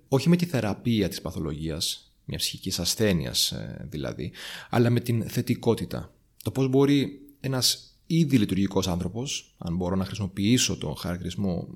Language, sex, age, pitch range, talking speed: Greek, male, 30-49, 100-135 Hz, 140 wpm